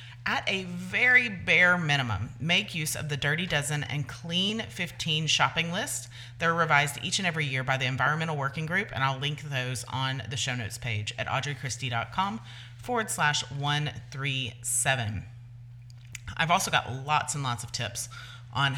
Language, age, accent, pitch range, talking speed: English, 30-49, American, 120-165 Hz, 160 wpm